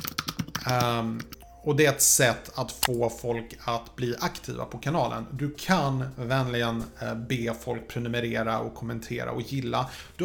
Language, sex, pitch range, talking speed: Swedish, male, 120-145 Hz, 145 wpm